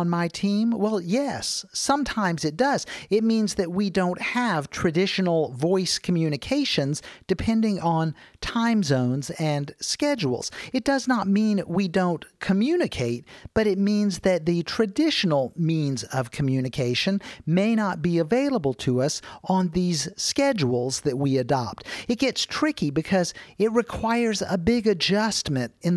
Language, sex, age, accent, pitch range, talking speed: English, male, 40-59, American, 150-220 Hz, 140 wpm